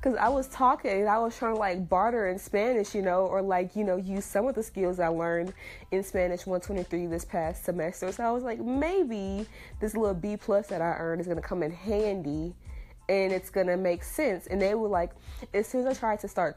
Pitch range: 175-230 Hz